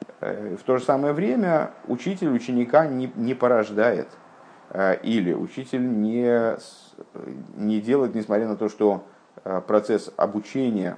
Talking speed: 115 wpm